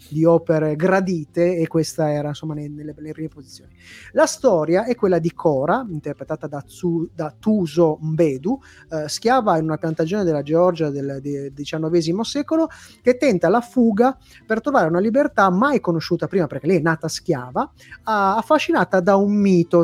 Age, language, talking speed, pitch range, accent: 30-49, Italian, 165 wpm, 160-215 Hz, native